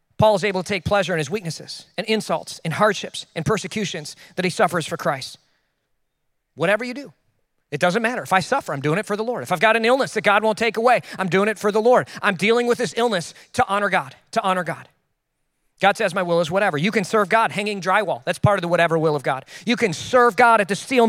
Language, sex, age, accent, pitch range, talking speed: English, male, 40-59, American, 180-240 Hz, 255 wpm